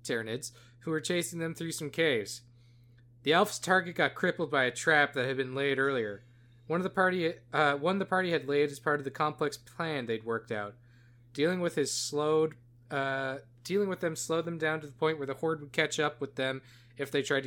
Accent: American